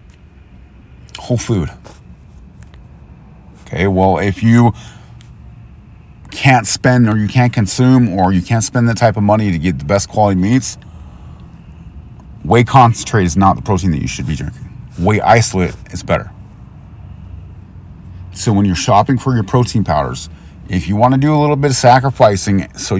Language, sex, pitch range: English, male, 85-115 Hz